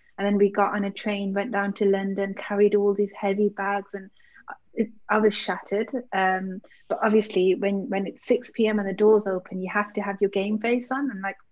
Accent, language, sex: British, English, female